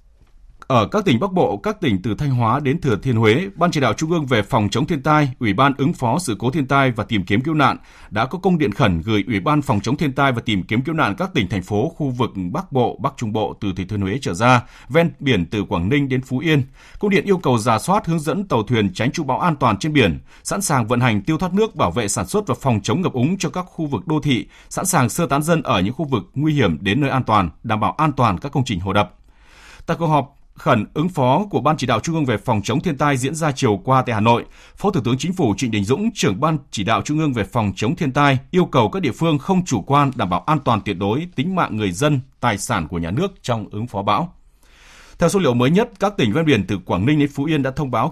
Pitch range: 110-155 Hz